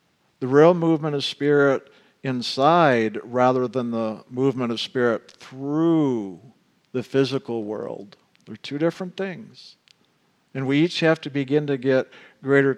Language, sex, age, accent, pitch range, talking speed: English, male, 50-69, American, 125-155 Hz, 135 wpm